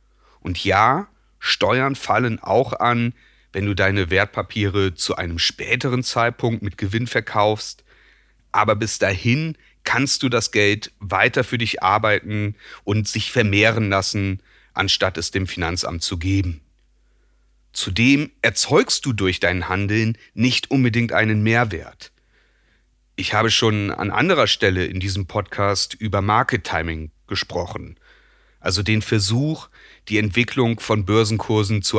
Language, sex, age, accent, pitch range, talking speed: German, male, 30-49, German, 95-115 Hz, 130 wpm